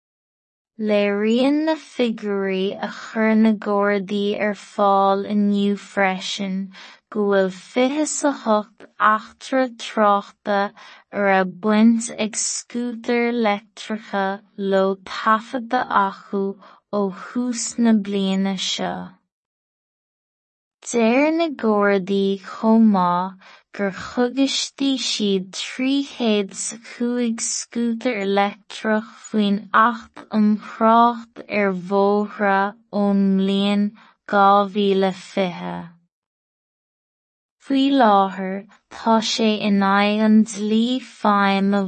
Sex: female